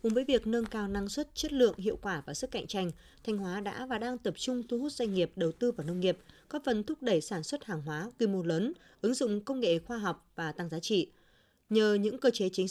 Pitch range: 175-245 Hz